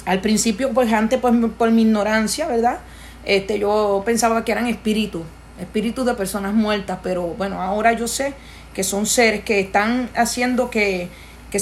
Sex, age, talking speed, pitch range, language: female, 30-49, 165 wpm, 195-235 Hz, English